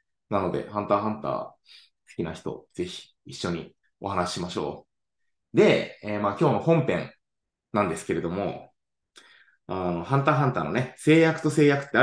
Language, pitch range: Japanese, 115-175 Hz